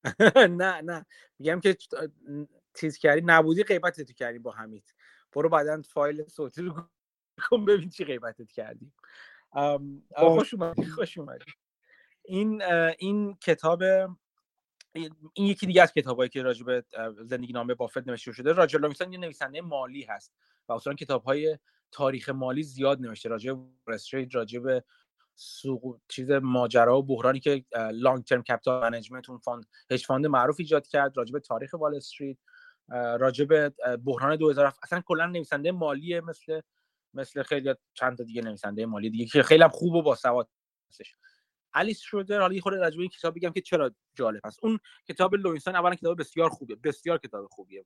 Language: Persian